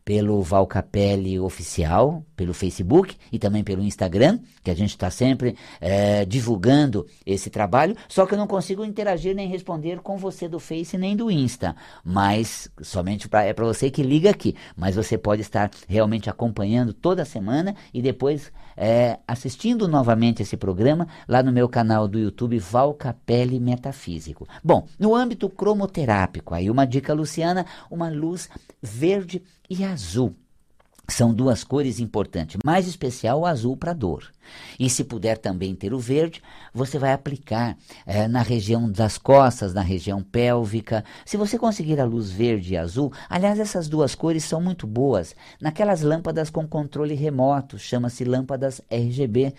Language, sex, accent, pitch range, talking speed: Portuguese, male, Brazilian, 105-155 Hz, 150 wpm